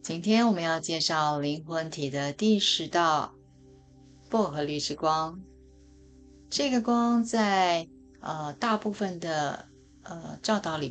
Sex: female